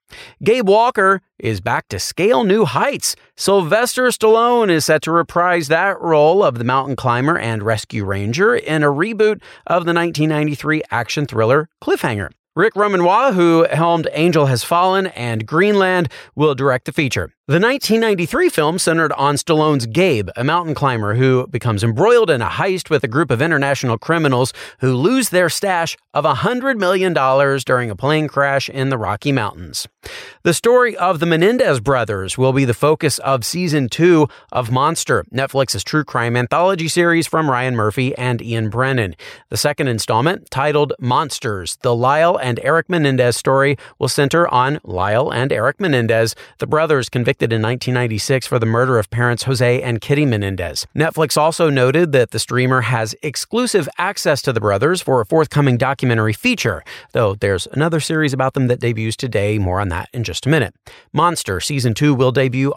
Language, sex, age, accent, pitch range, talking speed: English, male, 40-59, American, 120-165 Hz, 170 wpm